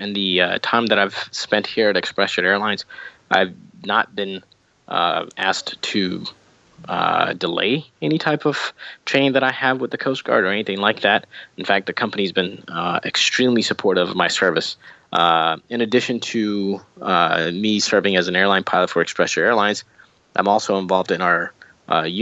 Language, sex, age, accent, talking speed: English, male, 20-39, American, 175 wpm